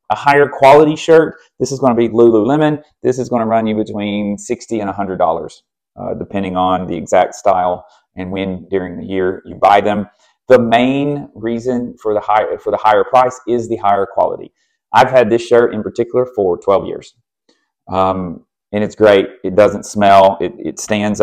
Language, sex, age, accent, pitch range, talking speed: English, male, 30-49, American, 100-120 Hz, 190 wpm